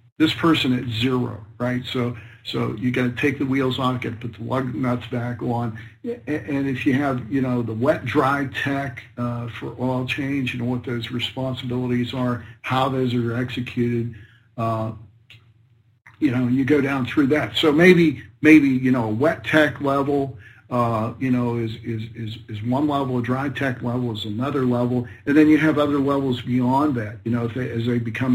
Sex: male